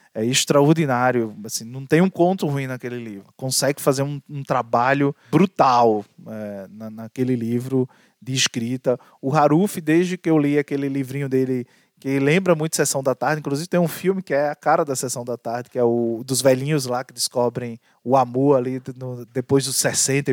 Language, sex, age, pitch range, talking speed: Portuguese, male, 20-39, 125-155 Hz, 190 wpm